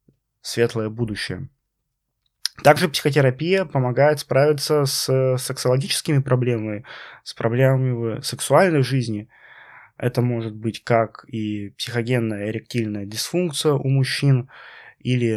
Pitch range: 115-145 Hz